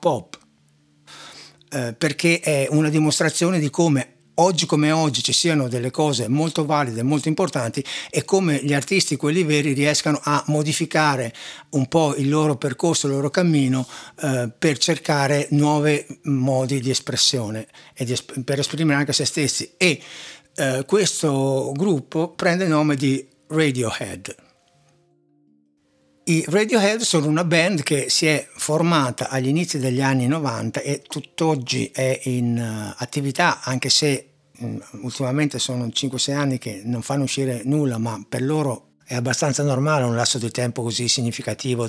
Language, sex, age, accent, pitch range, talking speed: Italian, male, 60-79, native, 125-155 Hz, 145 wpm